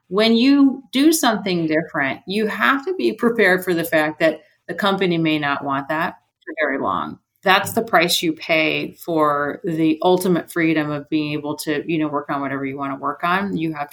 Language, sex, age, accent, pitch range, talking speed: English, female, 30-49, American, 150-175 Hz, 205 wpm